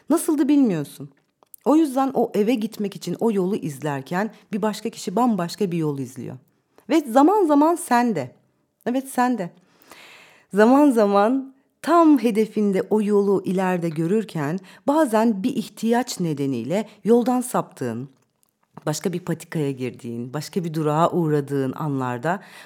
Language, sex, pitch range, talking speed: Turkish, female, 165-230 Hz, 125 wpm